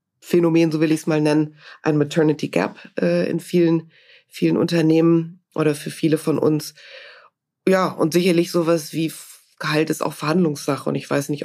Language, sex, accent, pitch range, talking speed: German, female, German, 150-170 Hz, 175 wpm